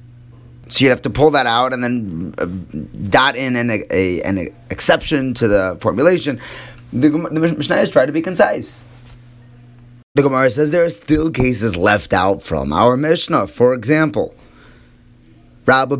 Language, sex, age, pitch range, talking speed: English, male, 30-49, 100-125 Hz, 160 wpm